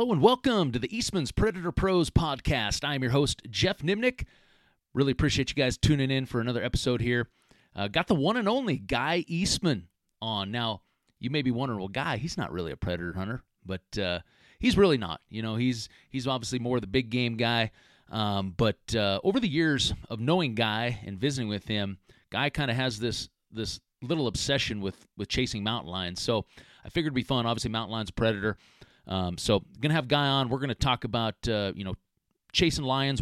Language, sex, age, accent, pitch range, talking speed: English, male, 30-49, American, 105-135 Hz, 205 wpm